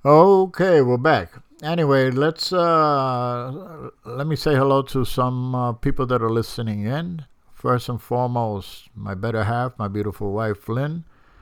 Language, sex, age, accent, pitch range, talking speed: English, male, 60-79, American, 95-125 Hz, 150 wpm